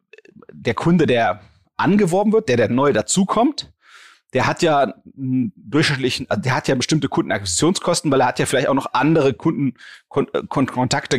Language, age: German, 30-49